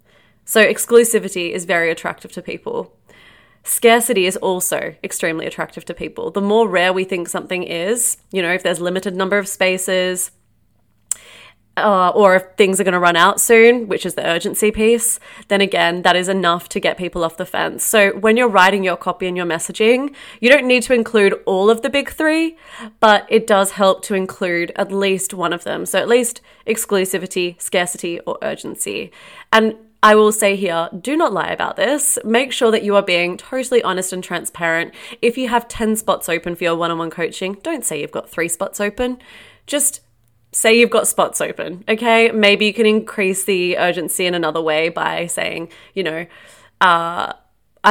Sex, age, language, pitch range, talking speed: female, 20-39, English, 180-225 Hz, 190 wpm